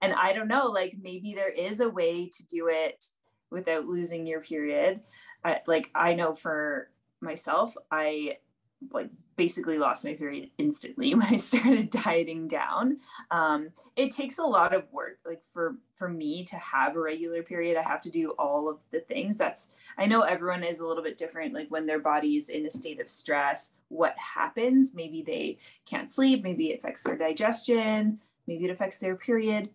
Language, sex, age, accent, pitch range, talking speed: English, female, 20-39, American, 165-245 Hz, 185 wpm